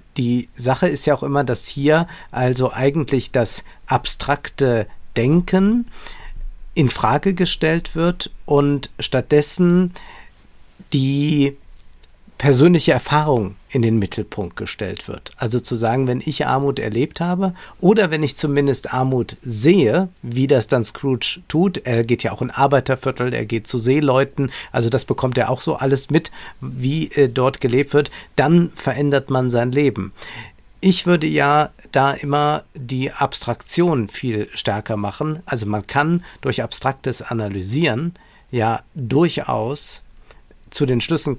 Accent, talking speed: German, 140 wpm